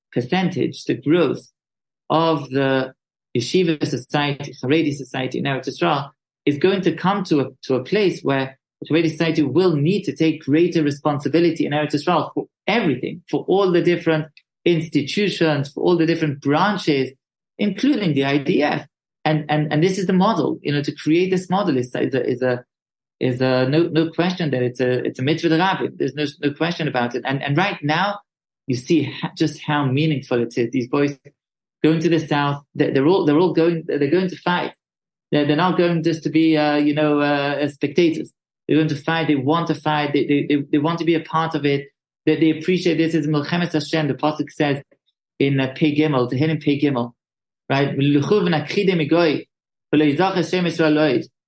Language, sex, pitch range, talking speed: English, male, 145-170 Hz, 190 wpm